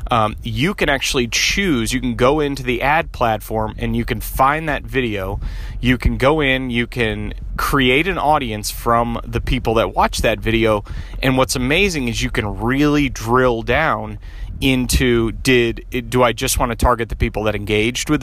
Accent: American